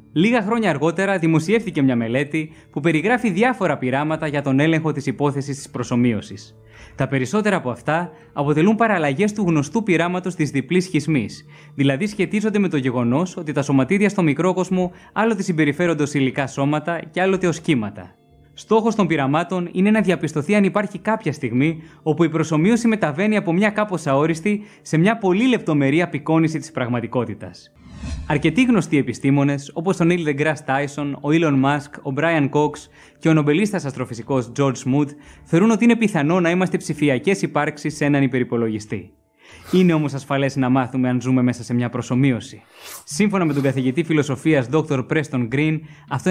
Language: Greek